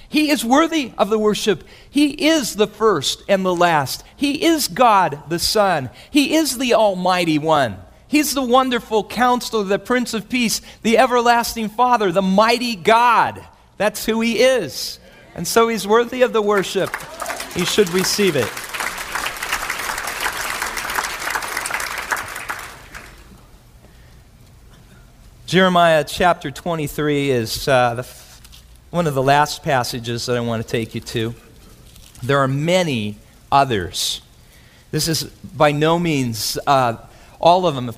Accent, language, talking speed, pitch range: American, English, 135 wpm, 140-215 Hz